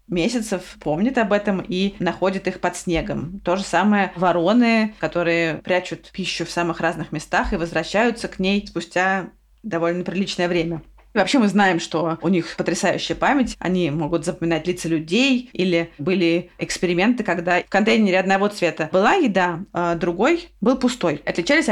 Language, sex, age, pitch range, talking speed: Russian, female, 20-39, 170-200 Hz, 150 wpm